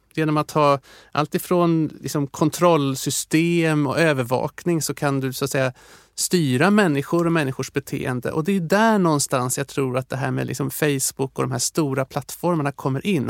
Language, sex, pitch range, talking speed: Swedish, male, 140-170 Hz, 160 wpm